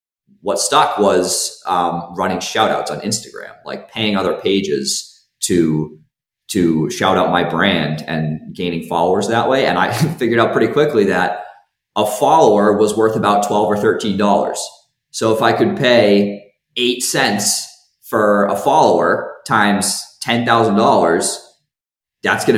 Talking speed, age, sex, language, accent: 140 wpm, 20-39, male, English, American